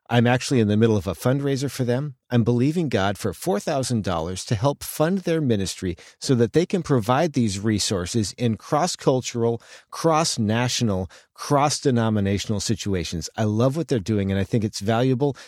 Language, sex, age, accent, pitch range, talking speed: English, male, 40-59, American, 105-135 Hz, 165 wpm